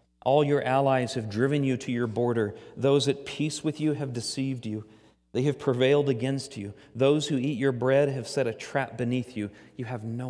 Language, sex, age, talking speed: English, male, 40-59, 210 wpm